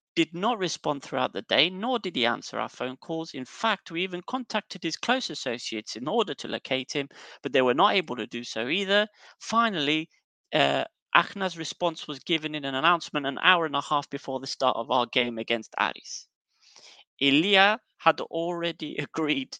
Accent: British